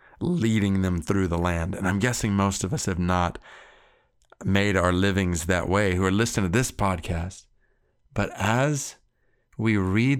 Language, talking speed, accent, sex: English, 165 wpm, American, male